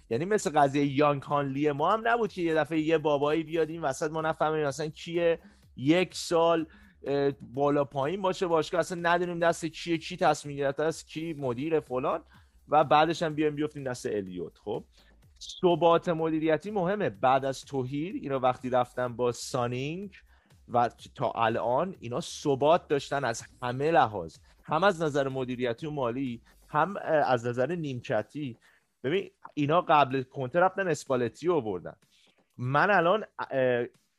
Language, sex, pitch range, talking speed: Persian, male, 130-175 Hz, 150 wpm